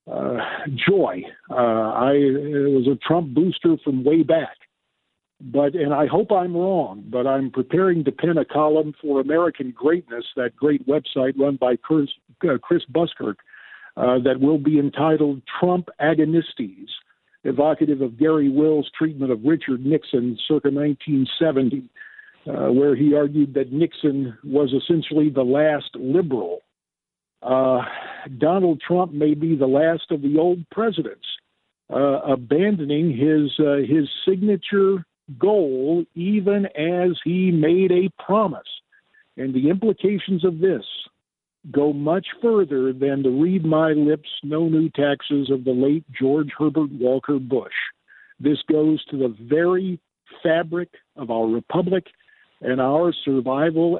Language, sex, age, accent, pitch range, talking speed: English, male, 50-69, American, 135-170 Hz, 130 wpm